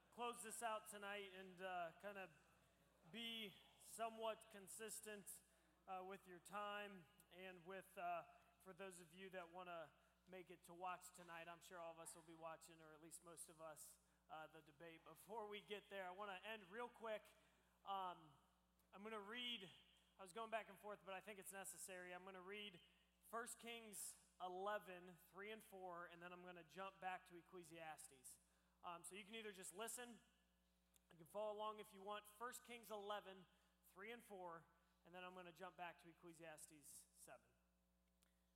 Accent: American